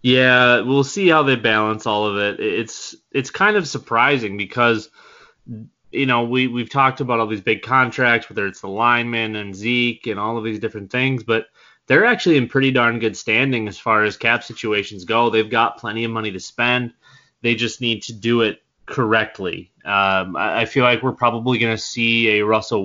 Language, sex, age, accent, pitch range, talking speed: English, male, 20-39, American, 105-120 Hz, 200 wpm